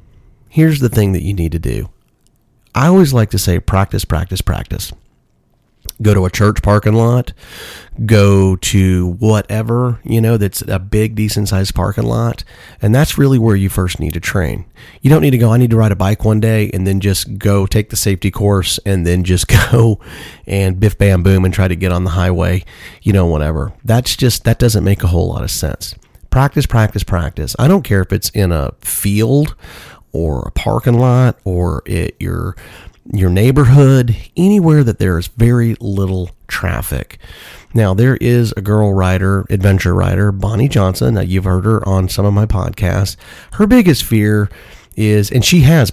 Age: 30-49